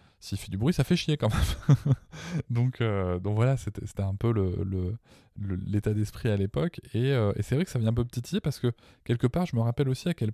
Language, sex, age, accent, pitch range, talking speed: French, male, 20-39, French, 100-125 Hz, 260 wpm